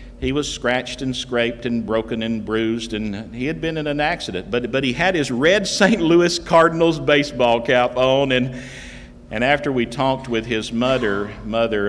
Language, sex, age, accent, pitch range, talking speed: English, male, 50-69, American, 110-135 Hz, 185 wpm